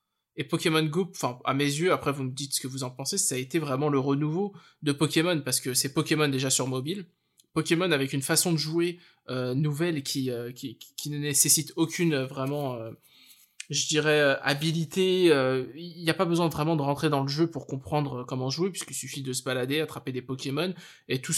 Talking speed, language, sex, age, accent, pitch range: 215 wpm, French, male, 20-39, French, 135-160 Hz